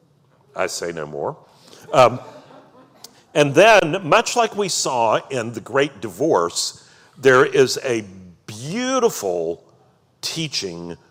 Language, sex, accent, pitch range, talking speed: English, male, American, 110-175 Hz, 110 wpm